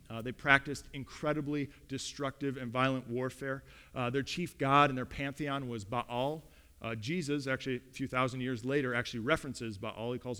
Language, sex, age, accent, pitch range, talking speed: English, male, 40-59, American, 120-170 Hz, 175 wpm